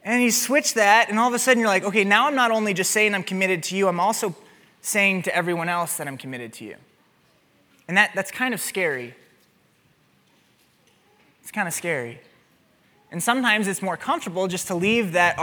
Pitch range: 165-205 Hz